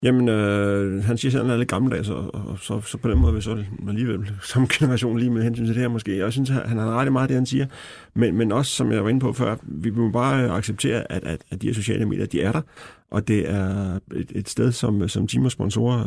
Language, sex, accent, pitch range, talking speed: Danish, male, native, 105-125 Hz, 280 wpm